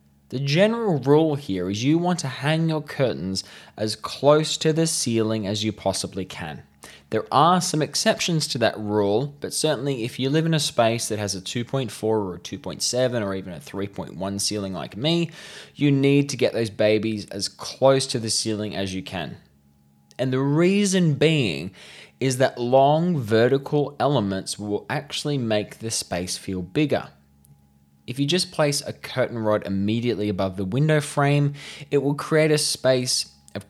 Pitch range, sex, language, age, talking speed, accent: 95-145 Hz, male, English, 20-39, 175 wpm, Australian